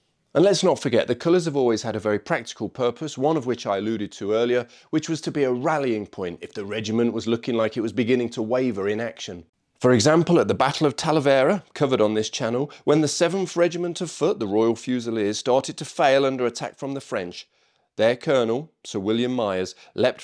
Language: English